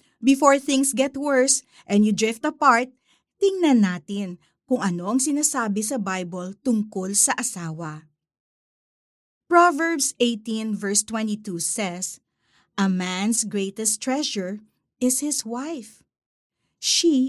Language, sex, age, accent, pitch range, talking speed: Filipino, female, 50-69, native, 195-270 Hz, 110 wpm